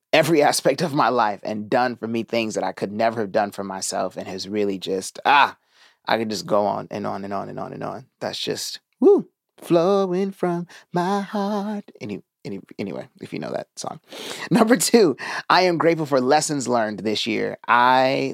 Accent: American